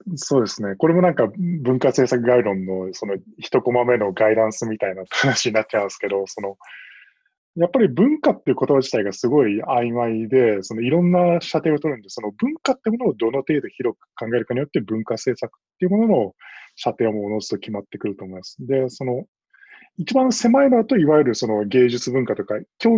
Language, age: Japanese, 20-39